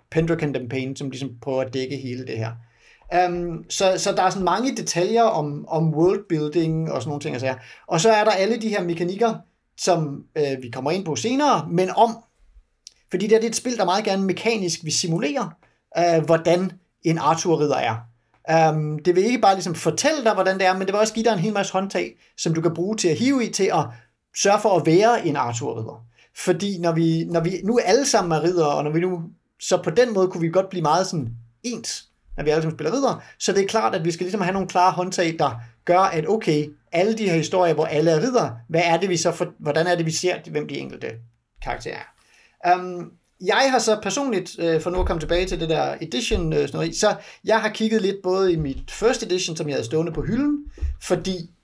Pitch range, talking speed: 155-195 Hz, 230 wpm